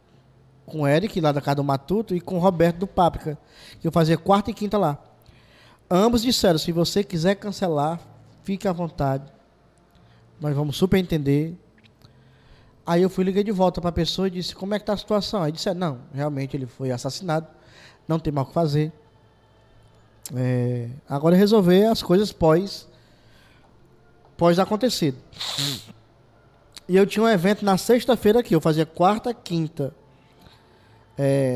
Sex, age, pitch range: male, 20-39, 135-190 Hz